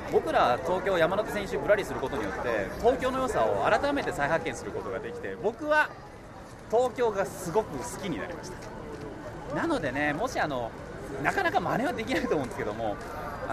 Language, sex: Japanese, male